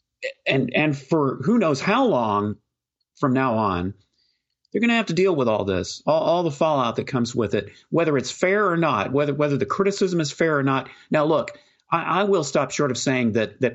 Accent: American